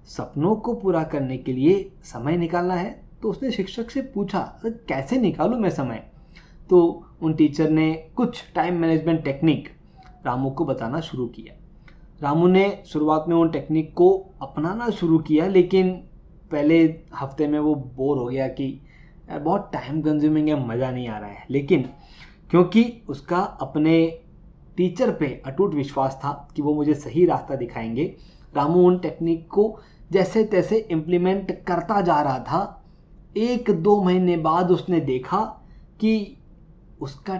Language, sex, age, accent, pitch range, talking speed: Hindi, male, 20-39, native, 135-180 Hz, 150 wpm